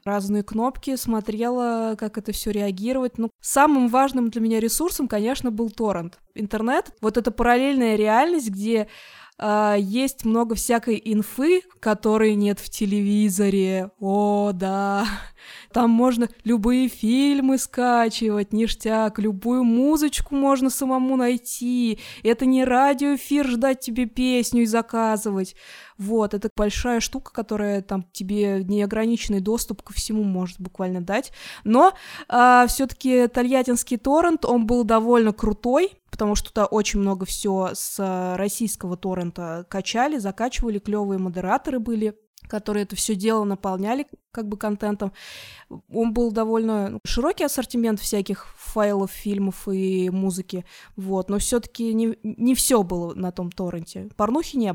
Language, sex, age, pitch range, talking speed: Russian, female, 20-39, 205-245 Hz, 130 wpm